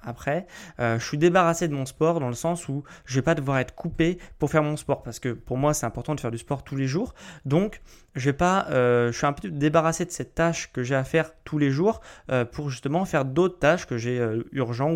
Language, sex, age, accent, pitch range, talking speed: French, male, 20-39, French, 130-165 Hz, 265 wpm